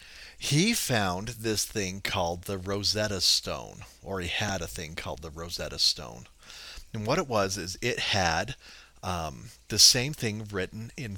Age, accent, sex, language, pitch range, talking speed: 40-59, American, male, English, 90-110 Hz, 160 wpm